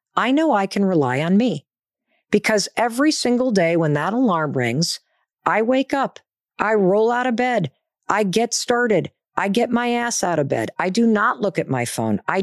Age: 50-69